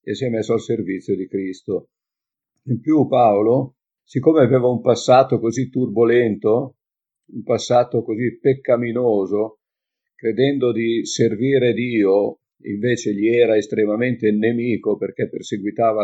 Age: 50-69